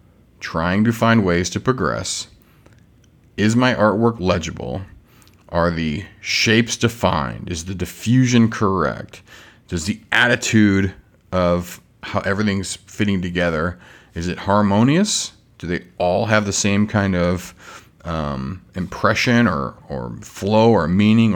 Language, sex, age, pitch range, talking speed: English, male, 40-59, 90-115 Hz, 125 wpm